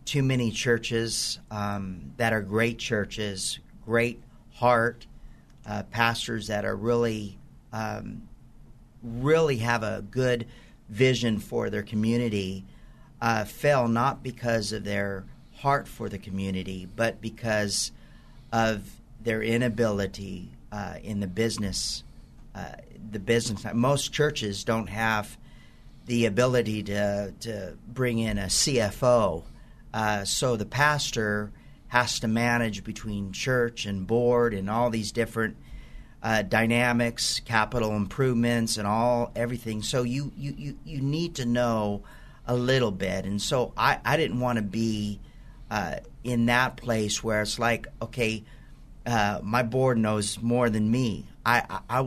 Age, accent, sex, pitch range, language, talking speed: 50-69, American, male, 105-120 Hz, English, 135 wpm